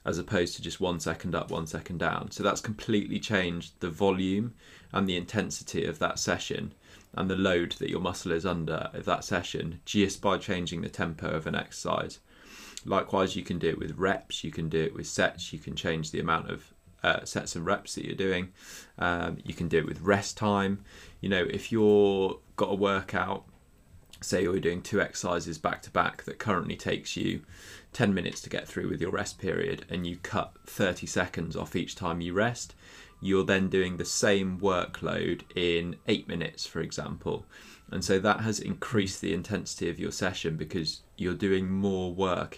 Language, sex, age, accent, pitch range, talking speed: English, male, 20-39, British, 85-100 Hz, 195 wpm